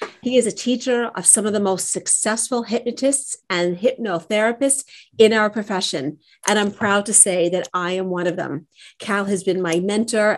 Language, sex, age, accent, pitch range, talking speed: English, female, 40-59, American, 180-225 Hz, 185 wpm